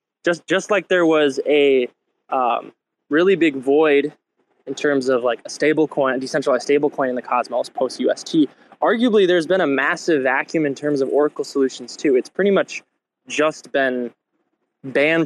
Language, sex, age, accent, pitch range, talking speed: English, male, 20-39, American, 135-170 Hz, 170 wpm